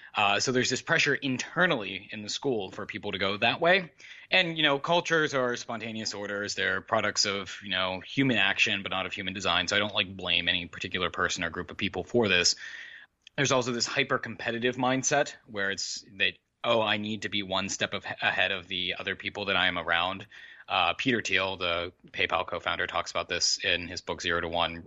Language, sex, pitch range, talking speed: English, male, 105-140 Hz, 210 wpm